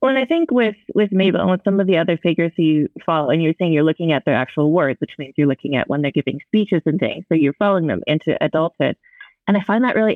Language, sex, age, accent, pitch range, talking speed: English, female, 20-39, American, 160-200 Hz, 280 wpm